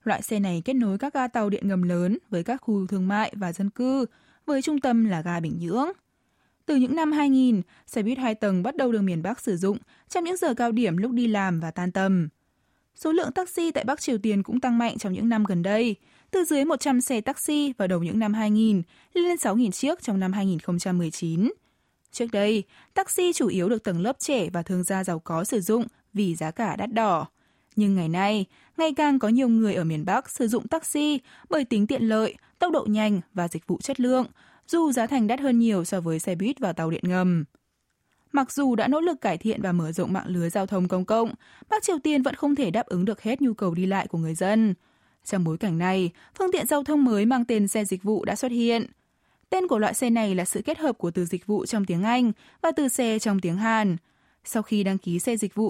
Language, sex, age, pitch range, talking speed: Vietnamese, female, 20-39, 190-260 Hz, 240 wpm